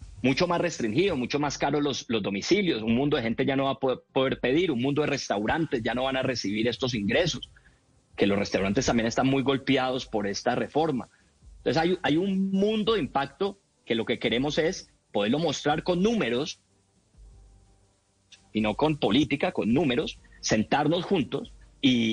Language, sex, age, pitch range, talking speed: Spanish, male, 30-49, 120-175 Hz, 180 wpm